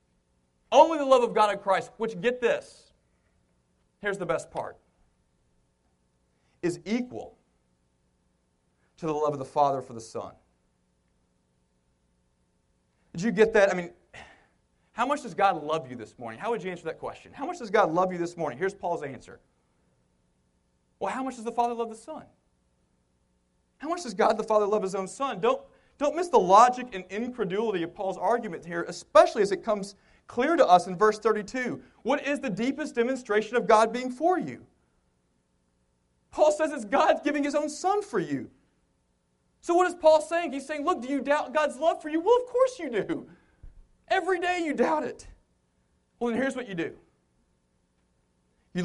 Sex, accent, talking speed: male, American, 180 wpm